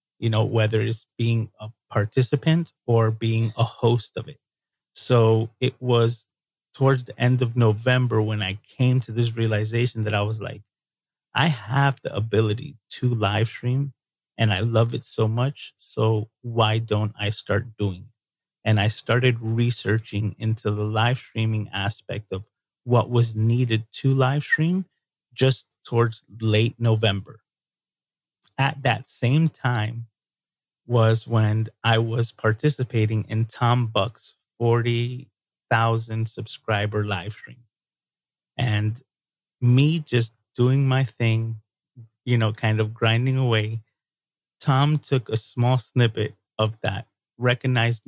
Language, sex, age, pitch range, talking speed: English, male, 30-49, 110-125 Hz, 135 wpm